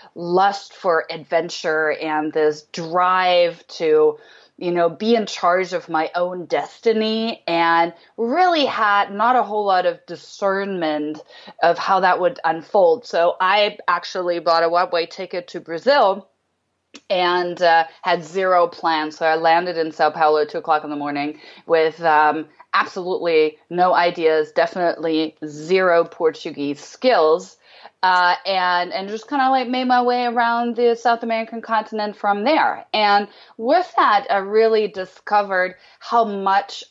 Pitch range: 165-215 Hz